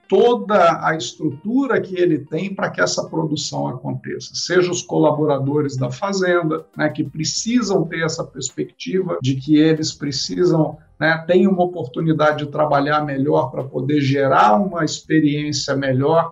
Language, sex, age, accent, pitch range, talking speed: Portuguese, male, 50-69, Brazilian, 150-185 Hz, 145 wpm